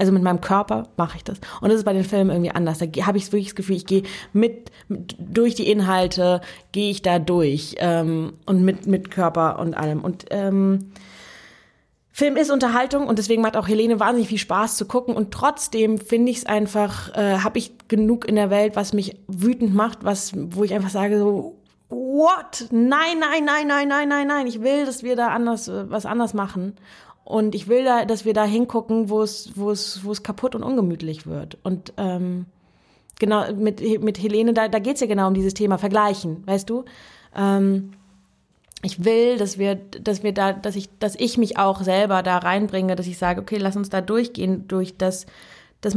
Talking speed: 200 wpm